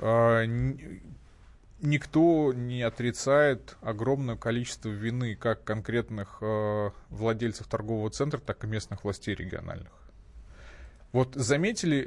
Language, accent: Russian, native